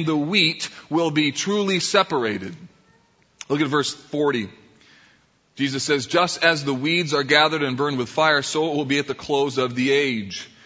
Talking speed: 180 wpm